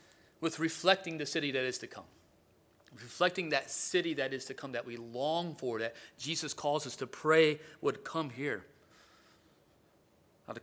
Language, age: English, 30-49